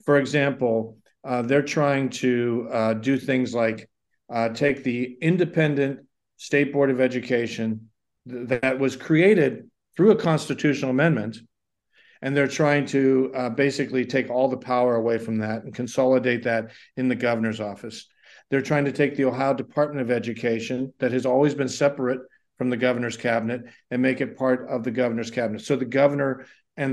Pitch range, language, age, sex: 120-145 Hz, English, 50-69, male